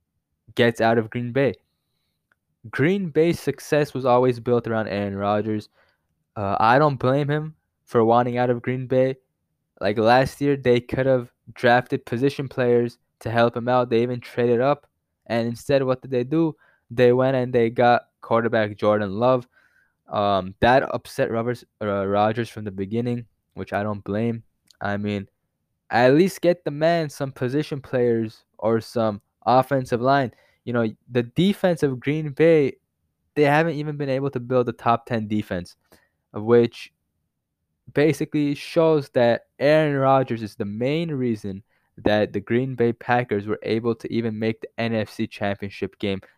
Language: English